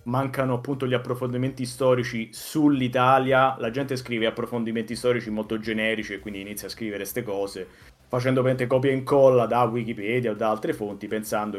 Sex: male